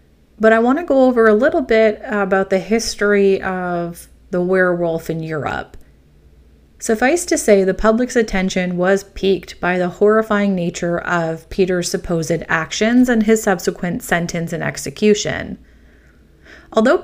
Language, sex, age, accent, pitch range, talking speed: English, female, 30-49, American, 175-225 Hz, 140 wpm